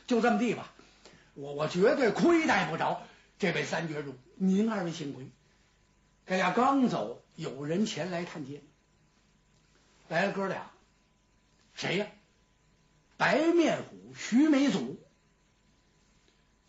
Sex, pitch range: male, 170-230 Hz